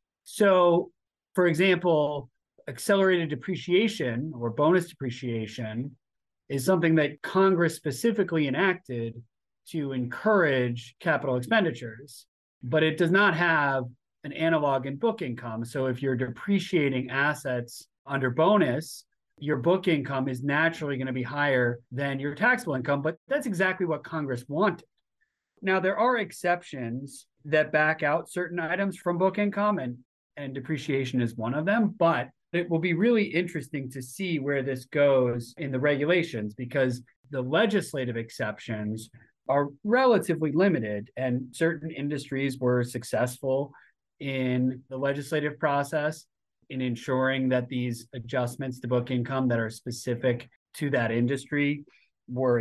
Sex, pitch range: male, 125-170 Hz